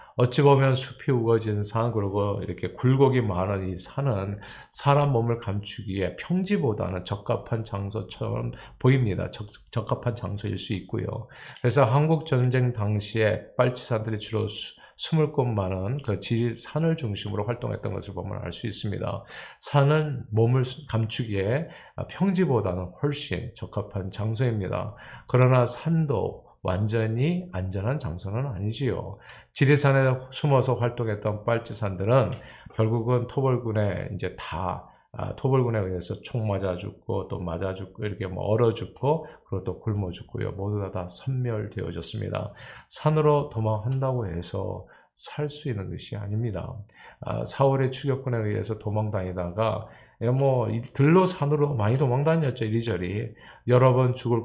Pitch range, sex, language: 105-130 Hz, male, Korean